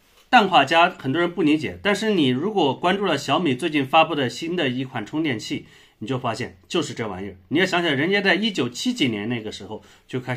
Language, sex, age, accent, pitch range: Chinese, male, 30-49, native, 110-175 Hz